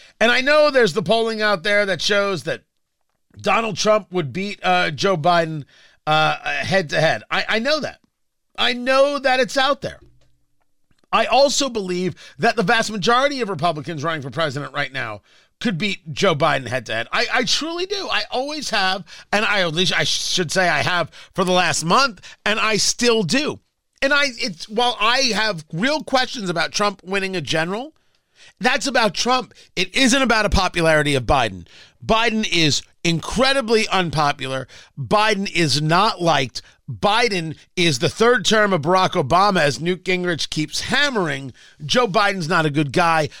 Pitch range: 155-225 Hz